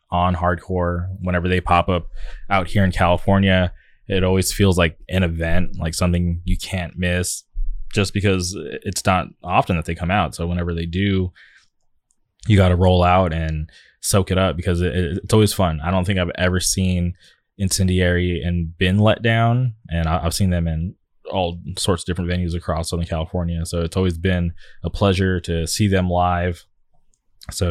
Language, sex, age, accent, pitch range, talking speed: English, male, 20-39, American, 85-95 Hz, 180 wpm